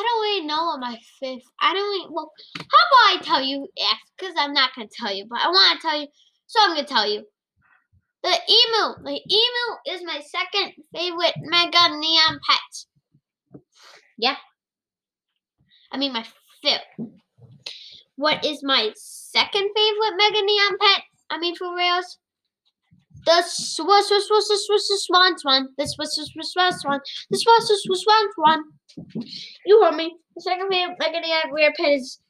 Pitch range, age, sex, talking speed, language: 280-395 Hz, 10-29, female, 155 wpm, English